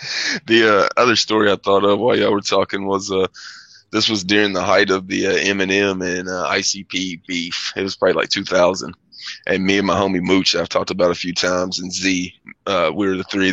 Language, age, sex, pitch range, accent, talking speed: English, 20-39, male, 95-105 Hz, American, 220 wpm